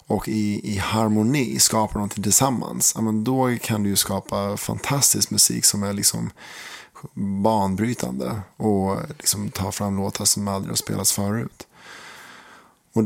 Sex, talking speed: male, 130 wpm